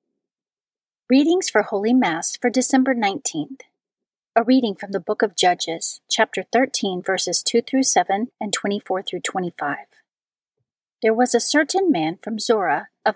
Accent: American